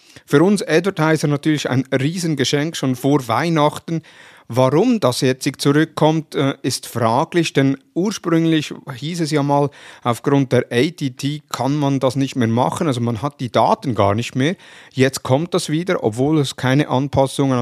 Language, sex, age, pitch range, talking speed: German, male, 50-69, 125-145 Hz, 155 wpm